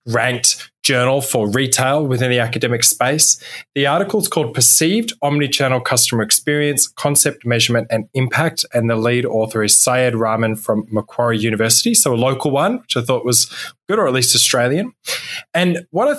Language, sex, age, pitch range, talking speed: English, male, 20-39, 115-145 Hz, 170 wpm